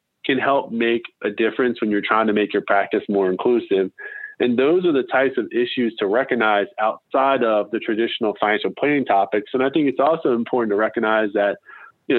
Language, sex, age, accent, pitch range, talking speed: English, male, 20-39, American, 115-150 Hz, 195 wpm